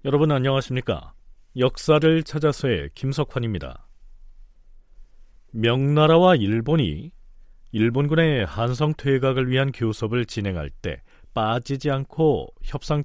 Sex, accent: male, native